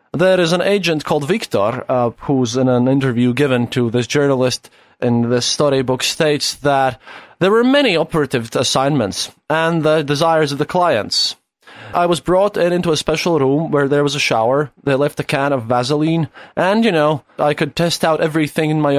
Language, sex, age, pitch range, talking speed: English, male, 20-39, 125-160 Hz, 190 wpm